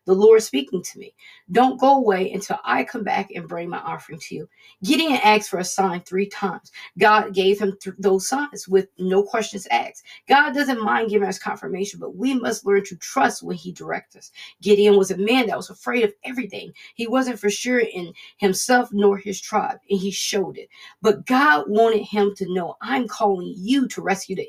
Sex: female